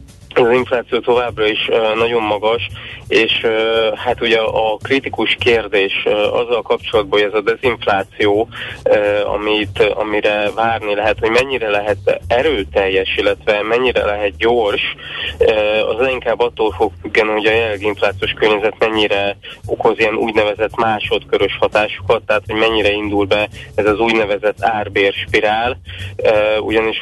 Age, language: 20-39, Hungarian